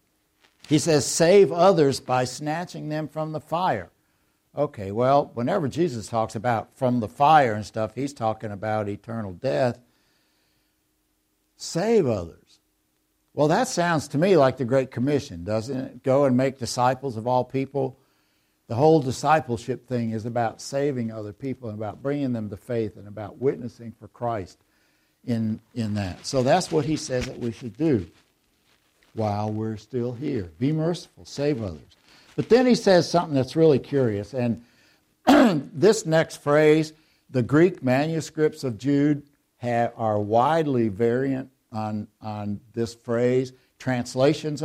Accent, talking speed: American, 150 wpm